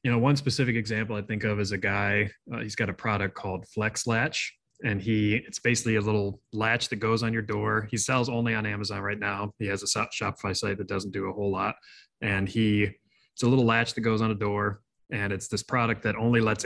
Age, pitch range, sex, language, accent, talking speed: 20-39, 105-115 Hz, male, English, American, 240 wpm